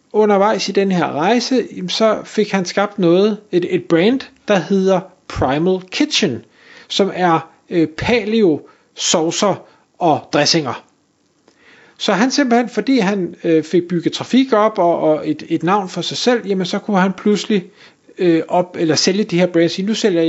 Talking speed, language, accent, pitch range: 150 wpm, Danish, native, 160-210 Hz